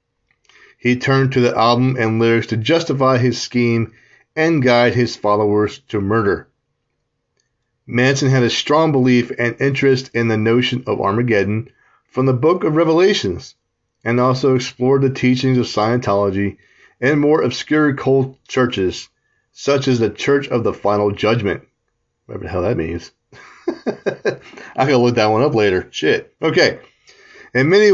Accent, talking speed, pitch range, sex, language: American, 150 wpm, 115-140 Hz, male, English